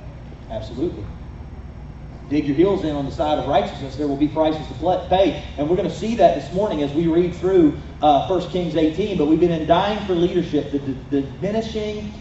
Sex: male